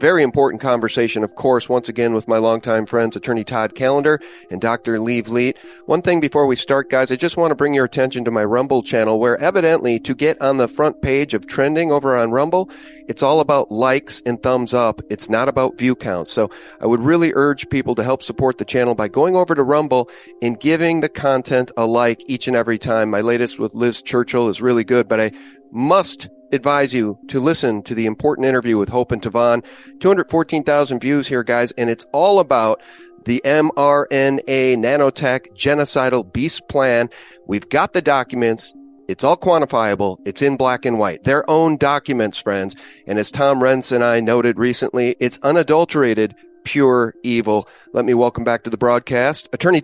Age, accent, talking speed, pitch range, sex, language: 40-59, American, 190 wpm, 115-145 Hz, male, English